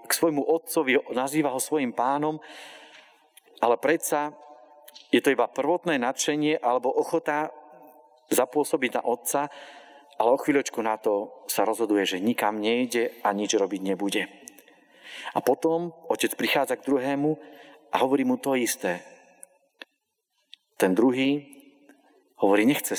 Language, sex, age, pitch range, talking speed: Slovak, male, 40-59, 120-150 Hz, 125 wpm